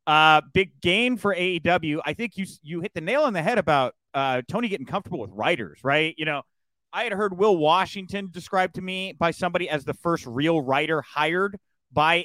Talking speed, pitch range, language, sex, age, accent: 205 wpm, 150-210 Hz, English, male, 30-49, American